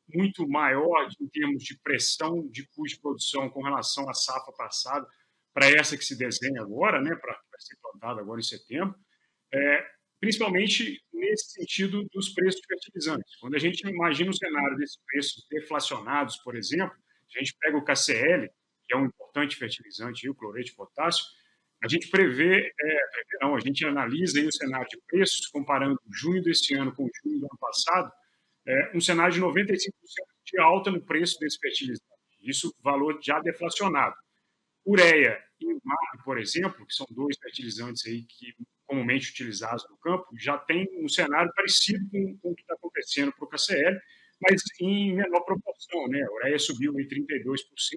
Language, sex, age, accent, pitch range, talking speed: Portuguese, male, 40-59, Brazilian, 140-195 Hz, 175 wpm